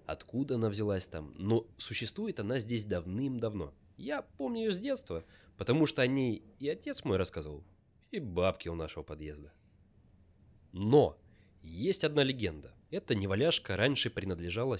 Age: 20-39